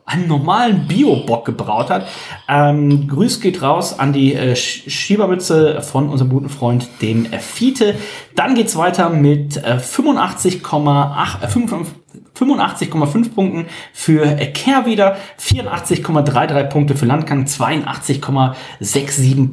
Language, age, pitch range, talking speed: German, 30-49, 135-175 Hz, 115 wpm